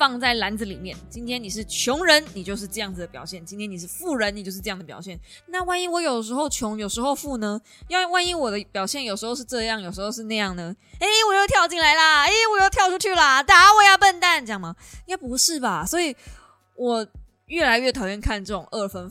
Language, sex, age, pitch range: Chinese, female, 20-39, 190-265 Hz